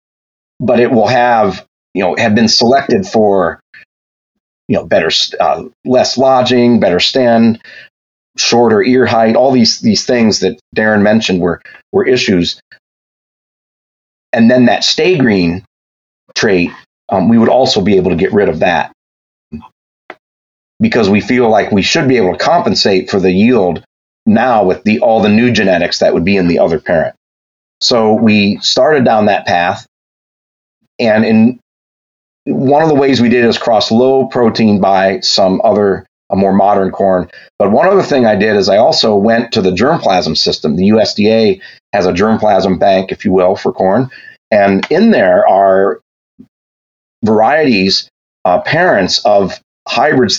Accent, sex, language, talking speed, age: American, male, English, 160 wpm, 30-49